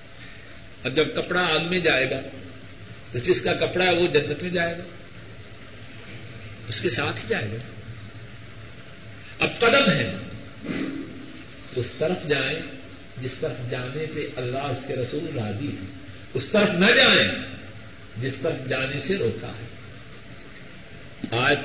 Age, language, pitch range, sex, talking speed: 50-69, Urdu, 110-170 Hz, male, 140 wpm